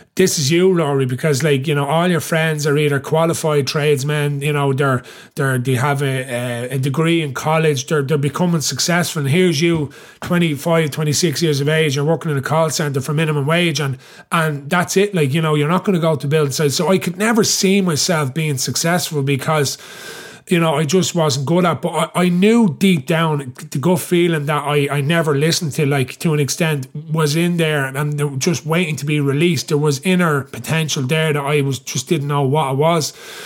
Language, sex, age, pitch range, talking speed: English, male, 30-49, 145-165 Hz, 215 wpm